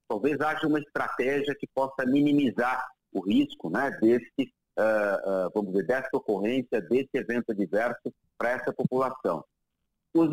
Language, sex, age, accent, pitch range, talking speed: Portuguese, male, 50-69, Brazilian, 110-150 Hz, 140 wpm